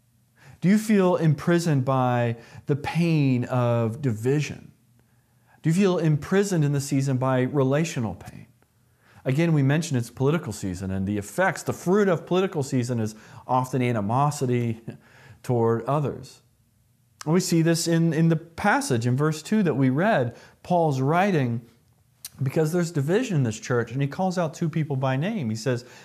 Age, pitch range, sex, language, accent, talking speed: 40-59, 120-175 Hz, male, English, American, 160 wpm